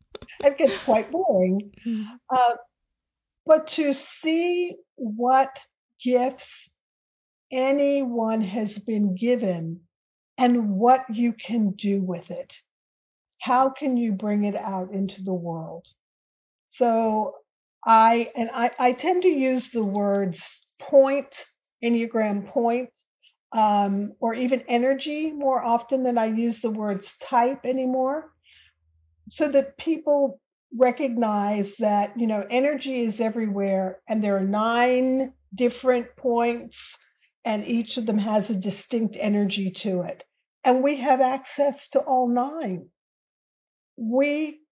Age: 50-69